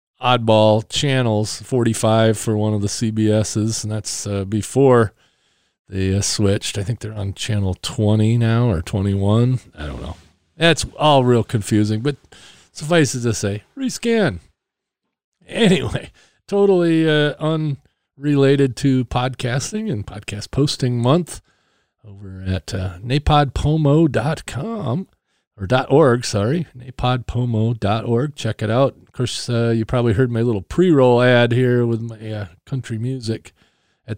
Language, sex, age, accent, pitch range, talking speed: English, male, 40-59, American, 110-140 Hz, 130 wpm